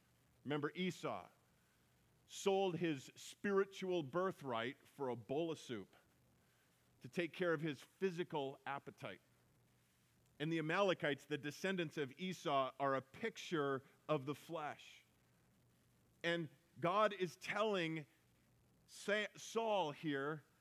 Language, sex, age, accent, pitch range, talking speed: English, male, 40-59, American, 140-185 Hz, 110 wpm